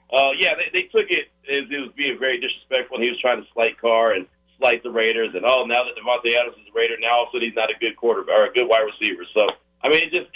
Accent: American